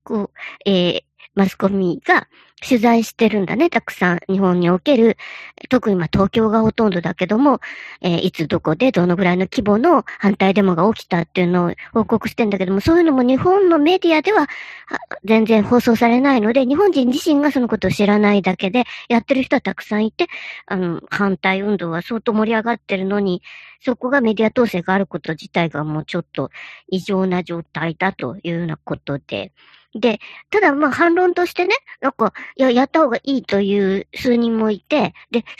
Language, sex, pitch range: Japanese, male, 190-255 Hz